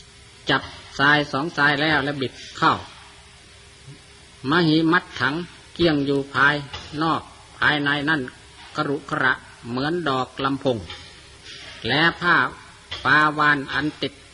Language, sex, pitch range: Thai, male, 125-155 Hz